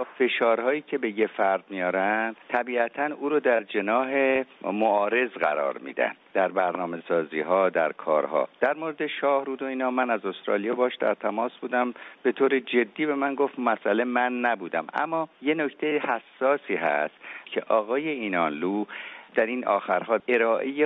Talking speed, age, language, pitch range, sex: 145 wpm, 50-69, Persian, 110-145 Hz, male